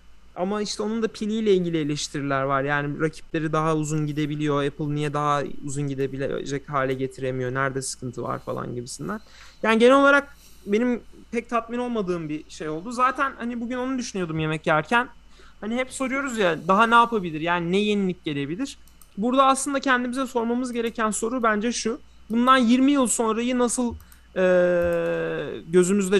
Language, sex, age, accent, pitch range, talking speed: Turkish, male, 30-49, native, 150-215 Hz, 155 wpm